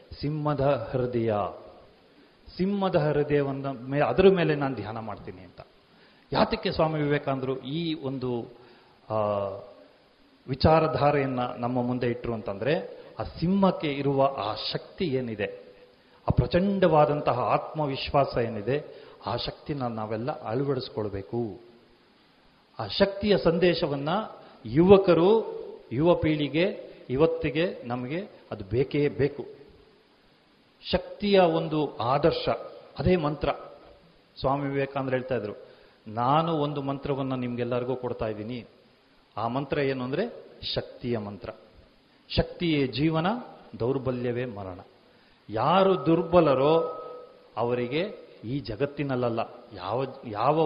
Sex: male